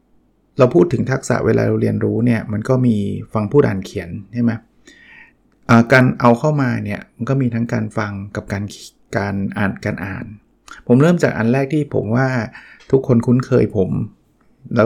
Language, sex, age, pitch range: Thai, male, 20-39, 110-130 Hz